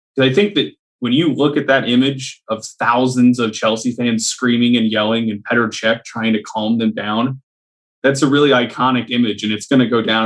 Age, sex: 20-39, male